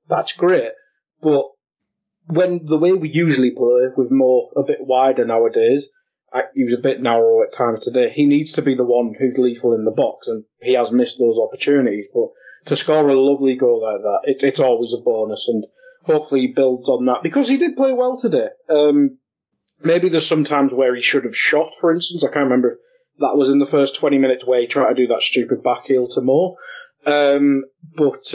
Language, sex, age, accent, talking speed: English, male, 30-49, British, 215 wpm